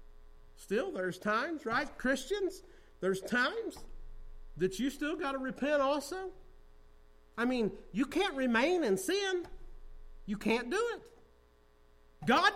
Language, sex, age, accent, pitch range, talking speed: English, male, 50-69, American, 200-280 Hz, 125 wpm